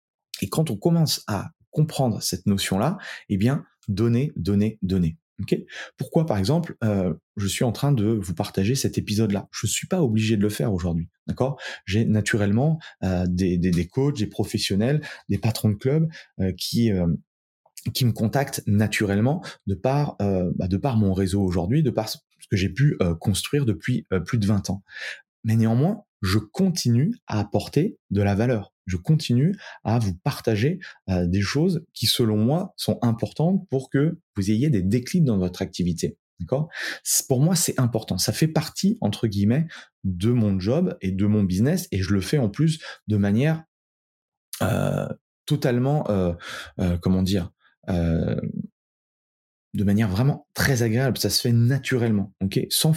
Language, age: French, 20-39